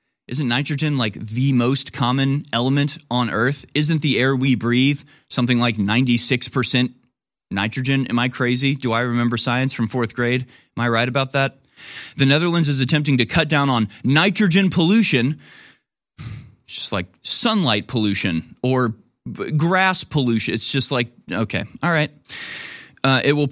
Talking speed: 155 wpm